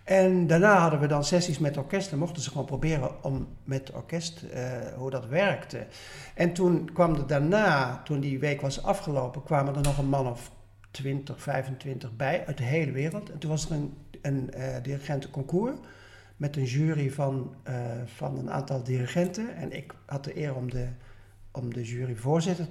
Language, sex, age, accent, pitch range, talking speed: Dutch, male, 50-69, Dutch, 130-165 Hz, 180 wpm